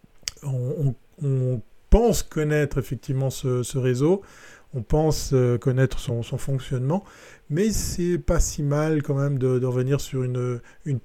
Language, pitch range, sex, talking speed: French, 125-150 Hz, male, 150 wpm